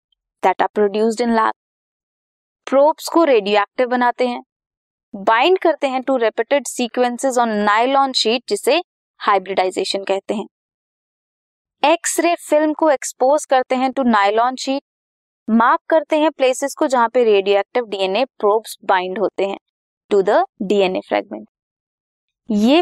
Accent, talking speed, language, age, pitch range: native, 130 wpm, Hindi, 20-39, 200-270 Hz